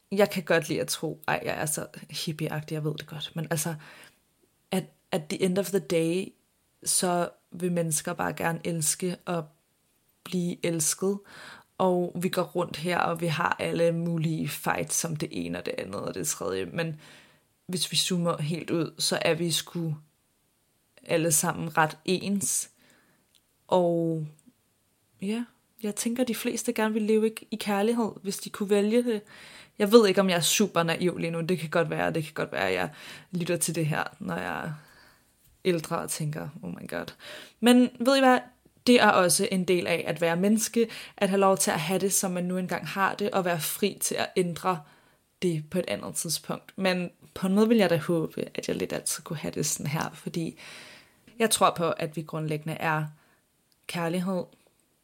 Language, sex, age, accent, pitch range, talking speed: Danish, female, 20-39, native, 165-195 Hz, 195 wpm